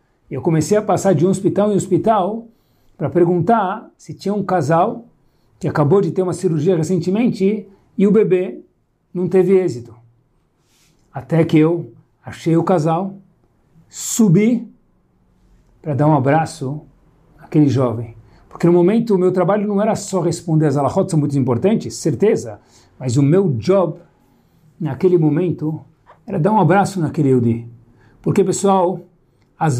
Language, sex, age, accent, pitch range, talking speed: Portuguese, male, 60-79, Brazilian, 150-205 Hz, 145 wpm